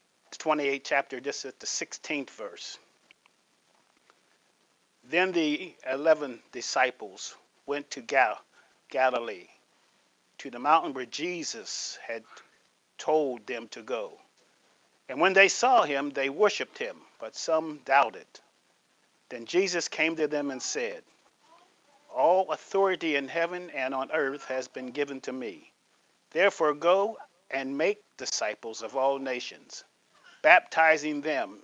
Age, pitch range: 40-59, 140-200 Hz